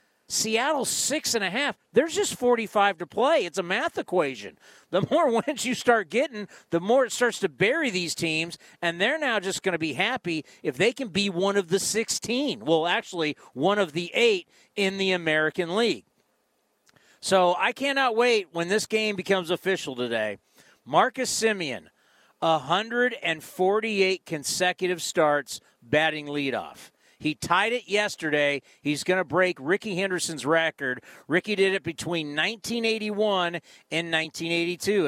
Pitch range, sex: 160-205 Hz, male